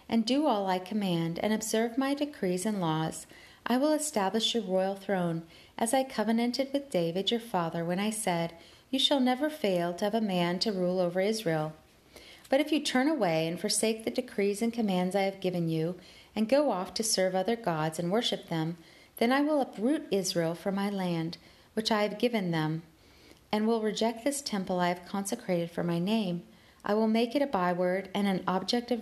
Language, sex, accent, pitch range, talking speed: English, female, American, 175-230 Hz, 205 wpm